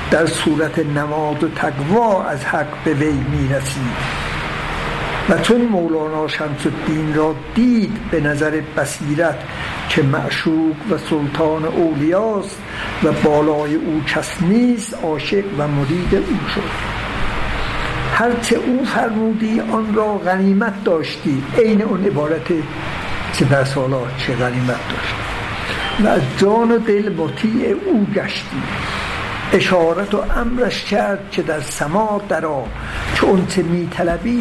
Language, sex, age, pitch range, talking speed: Persian, male, 60-79, 150-205 Hz, 120 wpm